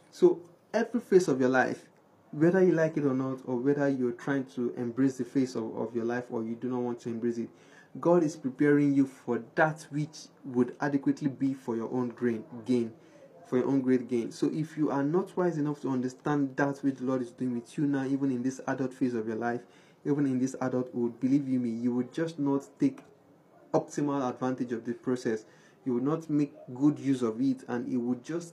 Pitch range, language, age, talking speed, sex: 125-150 Hz, English, 20-39, 225 wpm, male